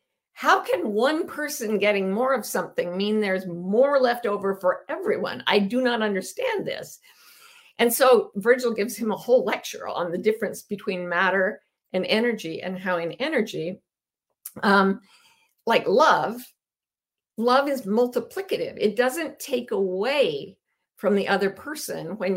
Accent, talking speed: American, 145 wpm